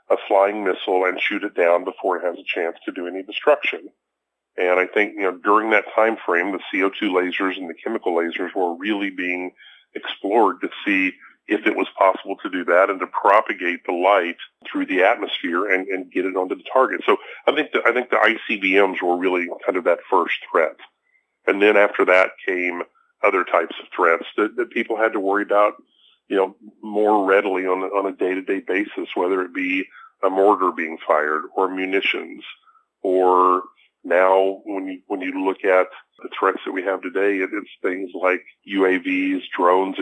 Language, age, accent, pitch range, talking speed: English, 40-59, American, 90-105 Hz, 190 wpm